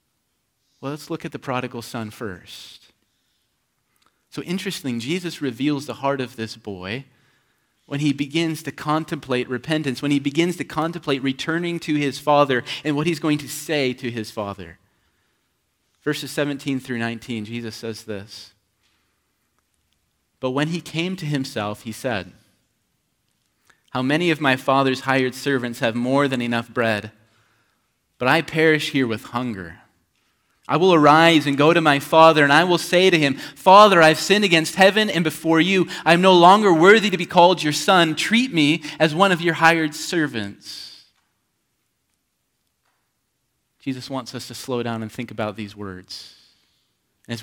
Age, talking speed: 30-49, 160 wpm